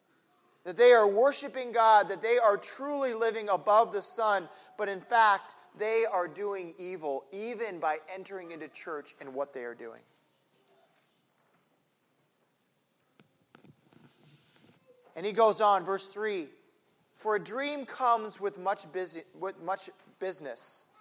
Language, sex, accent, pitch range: English, male, American, 185-230 Hz